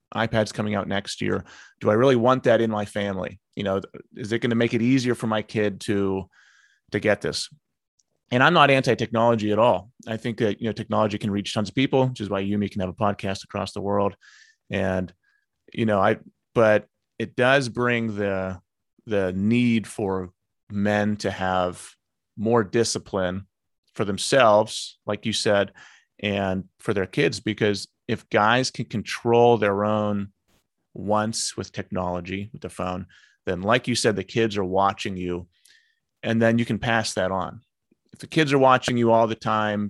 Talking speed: 180 wpm